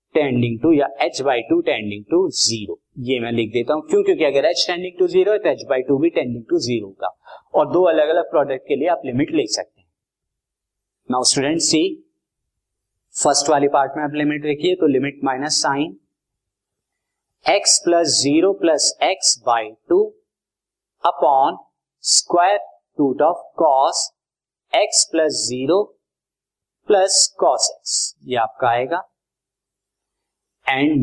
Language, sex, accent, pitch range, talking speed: Hindi, male, native, 135-195 Hz, 45 wpm